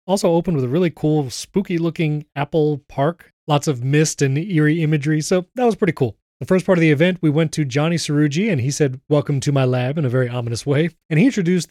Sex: male